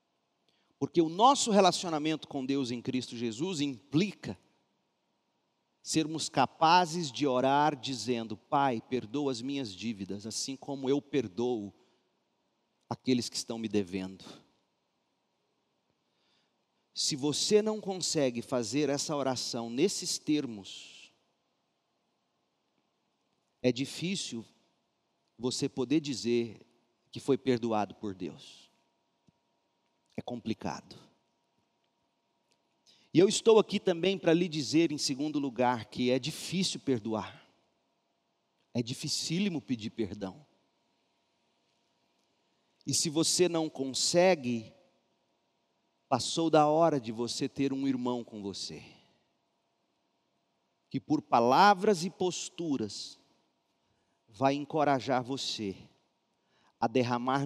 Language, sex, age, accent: Portuguese, male, 40-59, Brazilian